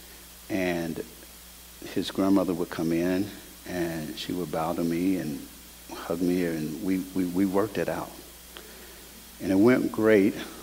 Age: 60-79